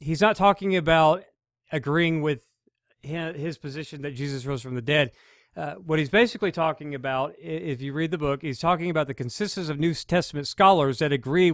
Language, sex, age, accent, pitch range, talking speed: English, male, 40-59, American, 130-165 Hz, 185 wpm